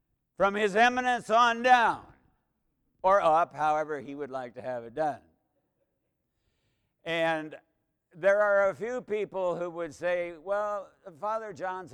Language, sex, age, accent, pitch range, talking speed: English, male, 60-79, American, 135-210 Hz, 135 wpm